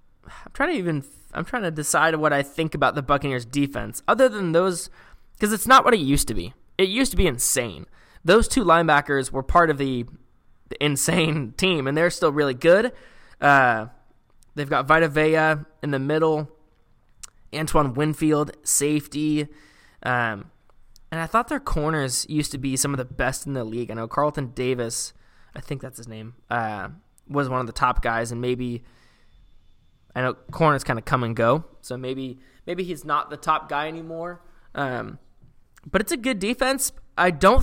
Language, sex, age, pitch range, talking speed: English, male, 20-39, 130-165 Hz, 185 wpm